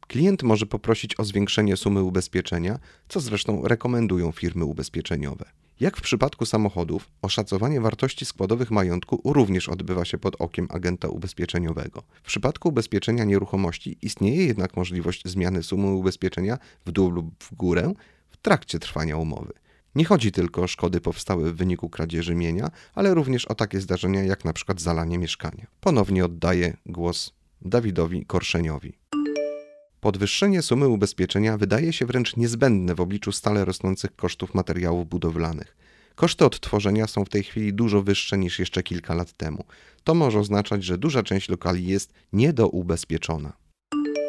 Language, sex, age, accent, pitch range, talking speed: Polish, male, 30-49, native, 90-115 Hz, 145 wpm